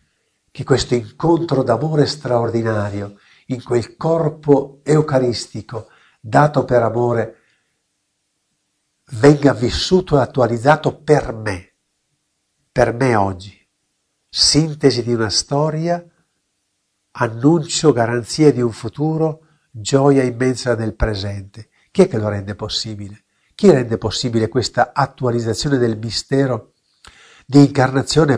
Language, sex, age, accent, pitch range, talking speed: Italian, male, 50-69, native, 110-150 Hz, 105 wpm